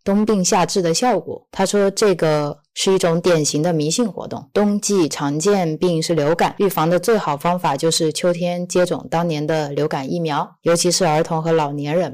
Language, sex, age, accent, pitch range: Chinese, female, 20-39, native, 155-195 Hz